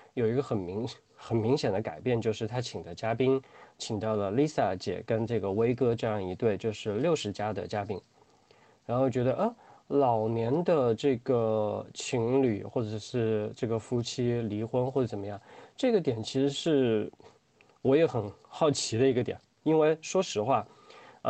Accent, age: native, 20-39